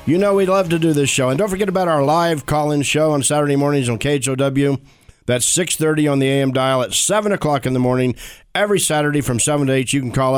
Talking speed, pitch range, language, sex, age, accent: 245 wpm, 130-160 Hz, English, male, 50-69, American